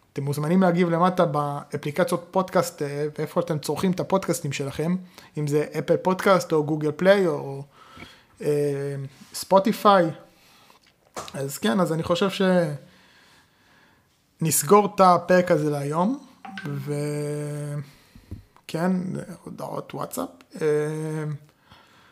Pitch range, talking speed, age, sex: 150-175 Hz, 100 wpm, 20-39, male